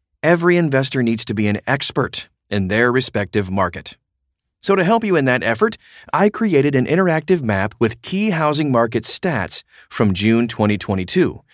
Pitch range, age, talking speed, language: 105-150 Hz, 30-49, 160 wpm, English